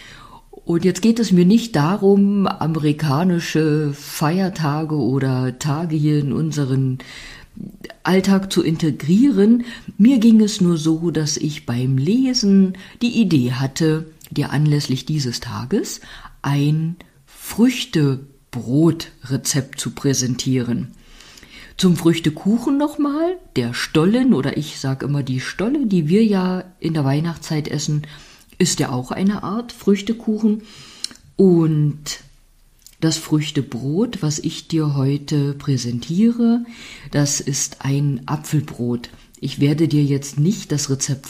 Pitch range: 135-185 Hz